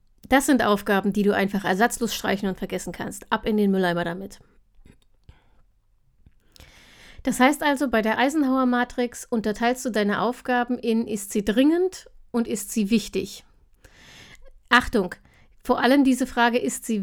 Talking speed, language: 145 wpm, German